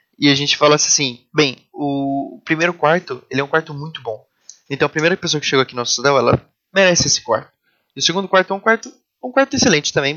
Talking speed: 235 wpm